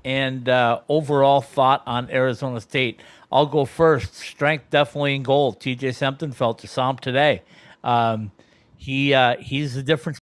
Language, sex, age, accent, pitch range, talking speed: English, male, 50-69, American, 115-145 Hz, 150 wpm